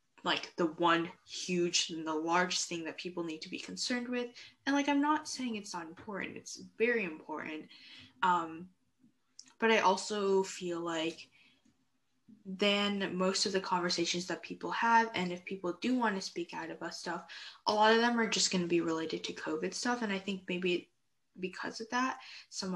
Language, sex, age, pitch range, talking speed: English, female, 10-29, 170-220 Hz, 185 wpm